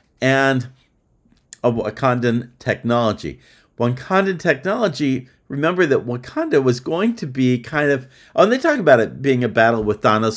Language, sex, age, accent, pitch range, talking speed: English, male, 50-69, American, 115-165 Hz, 150 wpm